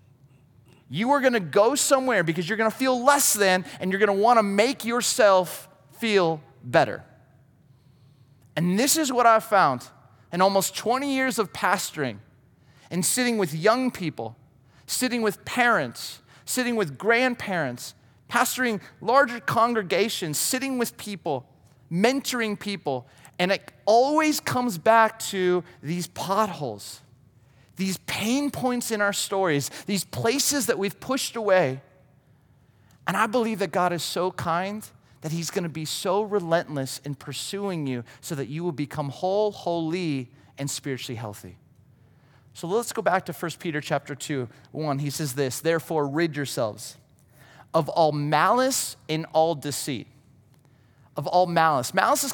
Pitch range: 140-210 Hz